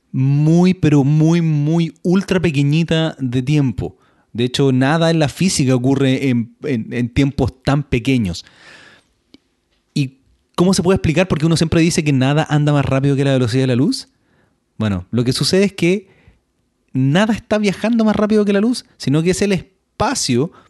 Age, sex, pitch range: 30-49, male, 135-190 Hz